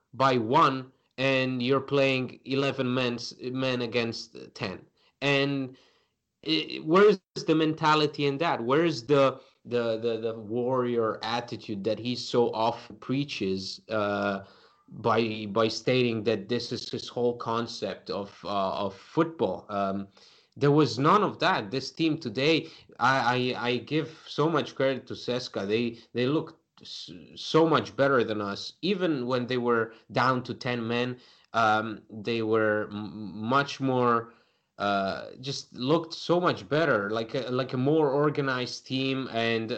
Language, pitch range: English, 115-135 Hz